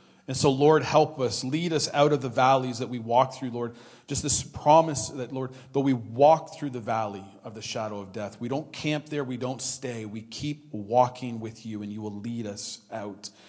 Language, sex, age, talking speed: English, male, 40-59, 220 wpm